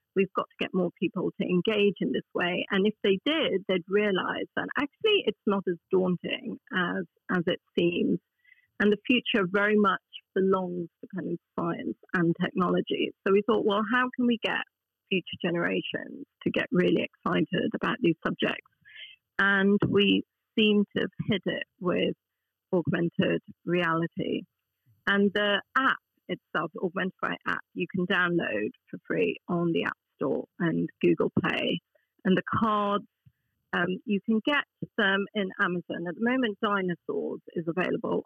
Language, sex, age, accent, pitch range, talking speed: English, female, 40-59, British, 180-215 Hz, 155 wpm